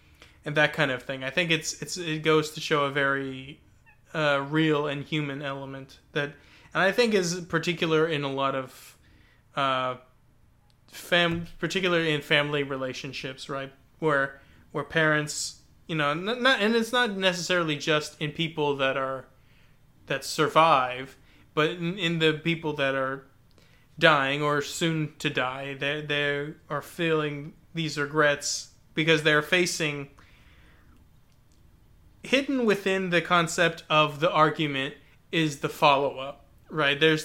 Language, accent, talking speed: English, American, 140 wpm